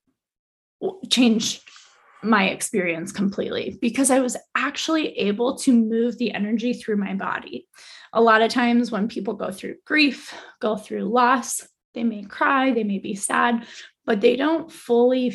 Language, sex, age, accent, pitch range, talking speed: English, female, 10-29, American, 205-245 Hz, 155 wpm